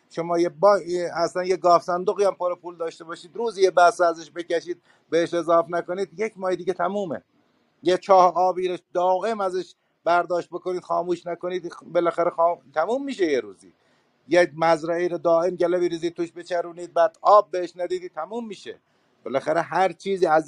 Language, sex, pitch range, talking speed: Persian, male, 160-190 Hz, 160 wpm